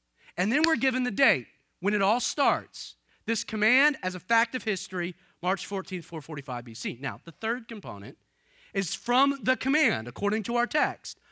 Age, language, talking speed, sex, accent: 30-49, English, 175 wpm, male, American